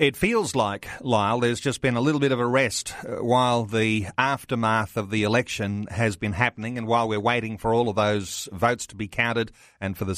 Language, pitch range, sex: English, 110-130 Hz, male